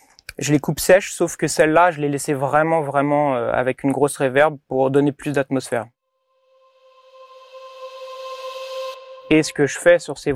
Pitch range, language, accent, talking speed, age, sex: 135-165 Hz, French, French, 160 wpm, 30-49, male